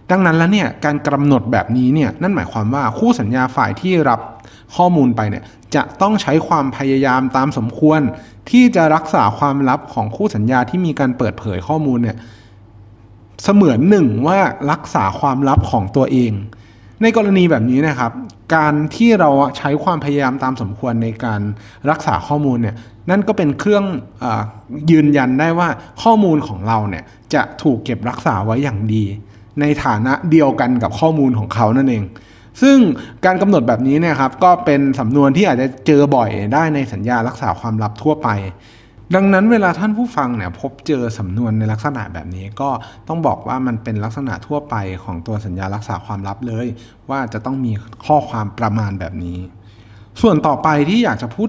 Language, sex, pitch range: Thai, male, 110-150 Hz